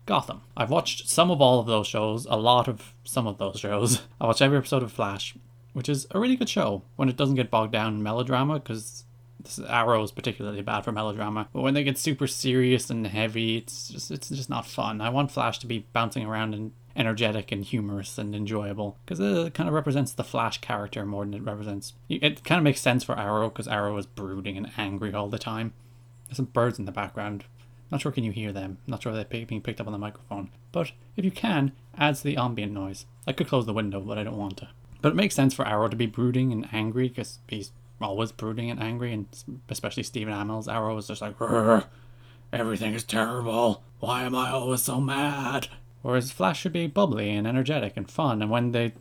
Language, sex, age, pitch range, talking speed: English, male, 20-39, 105-130 Hz, 225 wpm